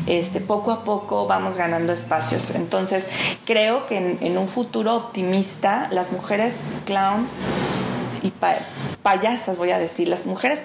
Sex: female